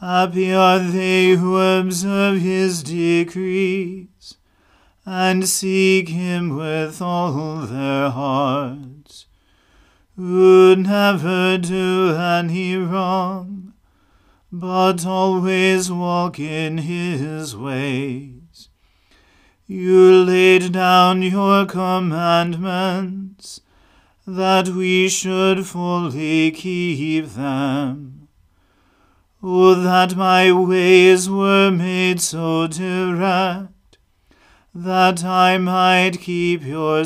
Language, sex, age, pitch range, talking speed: English, male, 40-59, 160-185 Hz, 80 wpm